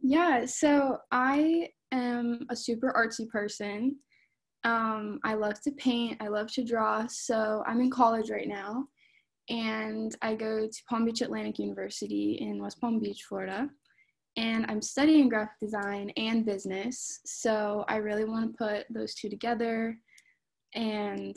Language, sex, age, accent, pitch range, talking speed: English, female, 10-29, American, 210-245 Hz, 150 wpm